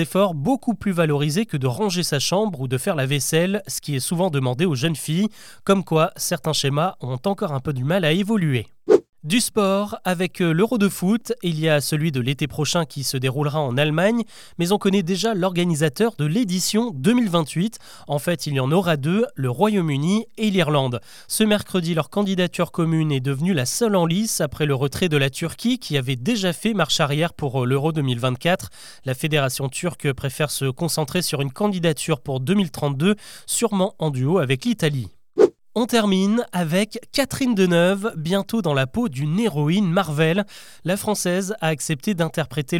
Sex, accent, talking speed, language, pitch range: male, French, 180 wpm, French, 145-200 Hz